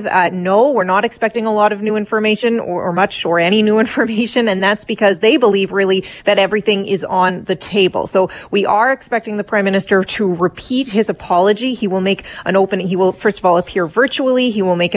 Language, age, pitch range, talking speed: English, 30-49, 180-210 Hz, 220 wpm